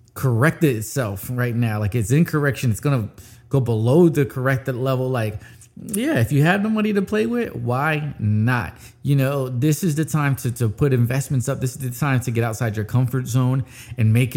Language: English